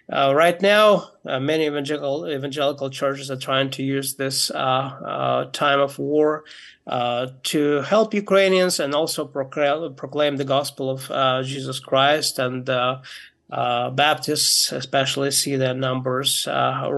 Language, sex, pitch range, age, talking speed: English, male, 130-145 Hz, 20-39, 145 wpm